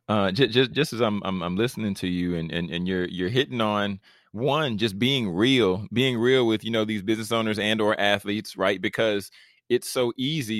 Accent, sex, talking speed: American, male, 210 wpm